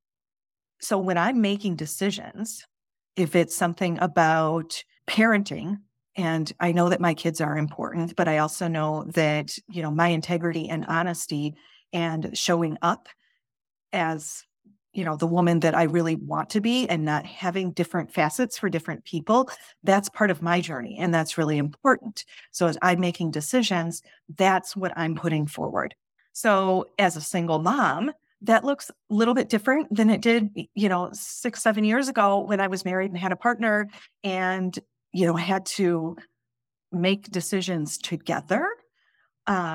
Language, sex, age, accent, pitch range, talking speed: English, female, 40-59, American, 165-210 Hz, 160 wpm